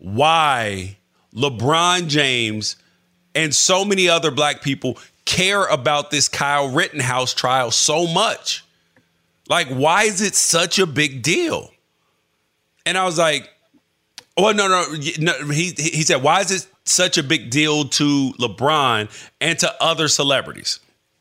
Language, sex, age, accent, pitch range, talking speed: English, male, 40-59, American, 145-180 Hz, 140 wpm